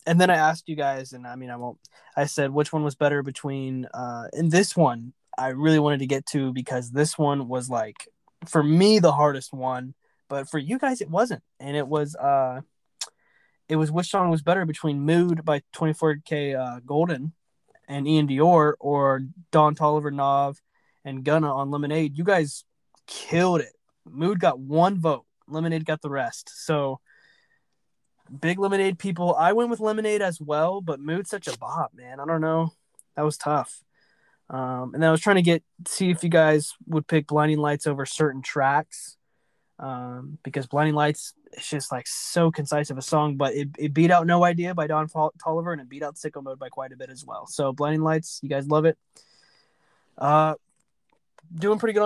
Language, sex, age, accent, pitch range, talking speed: English, male, 20-39, American, 140-170 Hz, 195 wpm